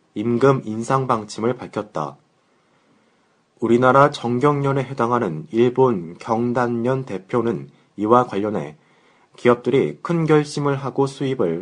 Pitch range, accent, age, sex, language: 110-135 Hz, native, 30-49, male, Korean